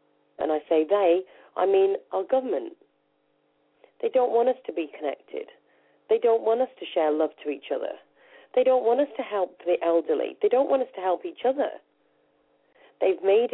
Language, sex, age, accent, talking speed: English, female, 40-59, British, 190 wpm